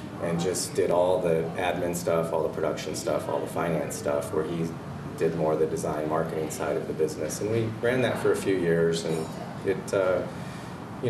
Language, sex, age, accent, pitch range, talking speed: English, male, 30-49, American, 80-105 Hz, 210 wpm